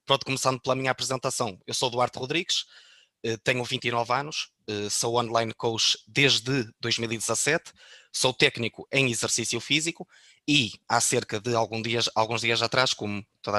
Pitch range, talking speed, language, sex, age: 110-130 Hz, 140 wpm, Portuguese, male, 20-39